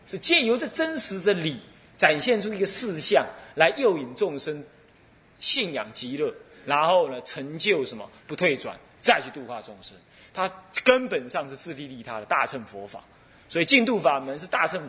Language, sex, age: Chinese, male, 30-49